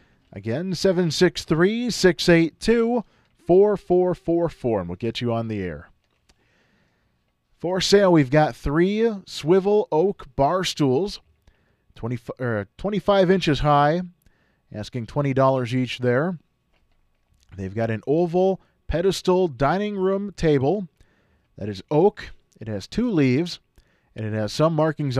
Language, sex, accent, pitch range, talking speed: English, male, American, 115-185 Hz, 110 wpm